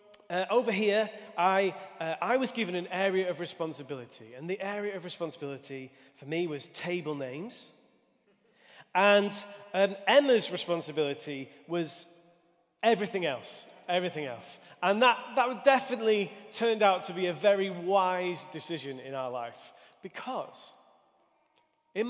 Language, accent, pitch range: English, British, 165-215 Hz